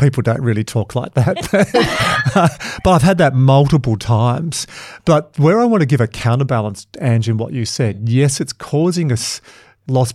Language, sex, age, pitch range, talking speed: English, male, 50-69, 115-135 Hz, 175 wpm